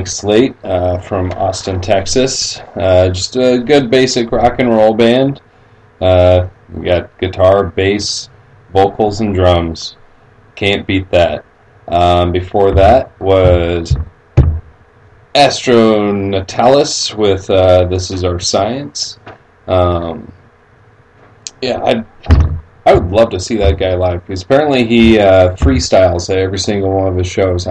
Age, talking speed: 30-49, 130 wpm